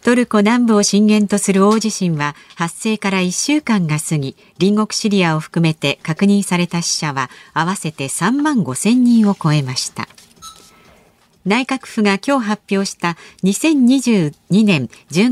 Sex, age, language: female, 50-69, Japanese